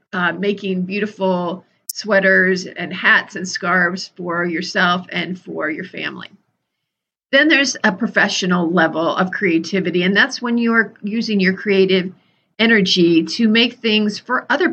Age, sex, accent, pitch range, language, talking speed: 40-59, female, American, 180-220 Hz, English, 145 wpm